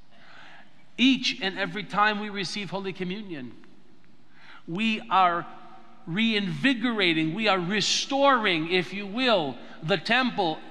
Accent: American